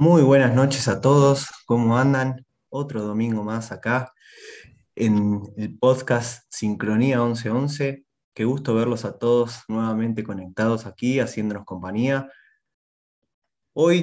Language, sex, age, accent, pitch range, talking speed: Spanish, male, 20-39, Argentinian, 105-130 Hz, 115 wpm